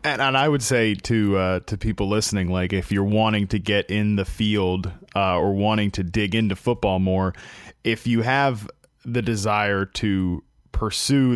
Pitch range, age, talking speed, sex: 105-135 Hz, 20-39, 180 wpm, male